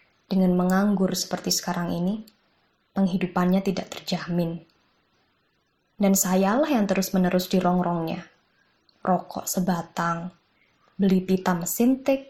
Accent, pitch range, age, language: native, 180-215 Hz, 20-39, Indonesian